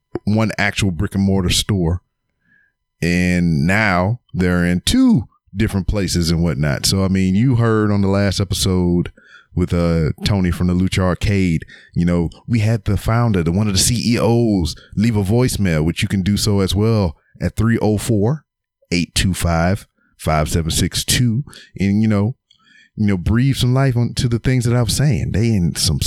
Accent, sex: American, male